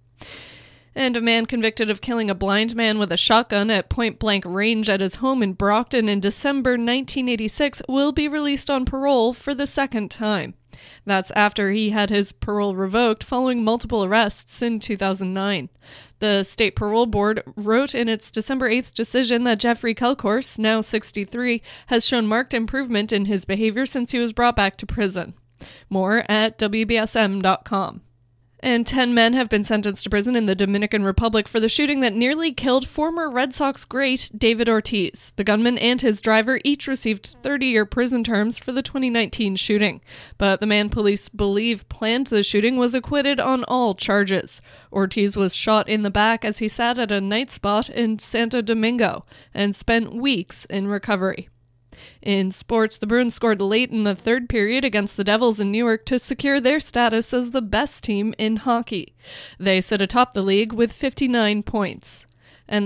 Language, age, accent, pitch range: English, 20-39, American, 205-245 Hz